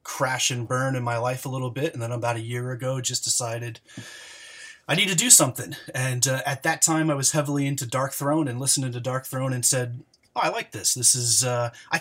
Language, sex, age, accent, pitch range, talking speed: English, male, 30-49, American, 120-150 Hz, 235 wpm